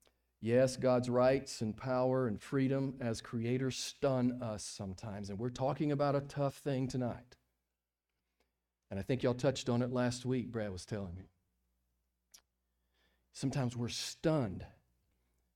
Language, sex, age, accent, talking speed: English, male, 40-59, American, 140 wpm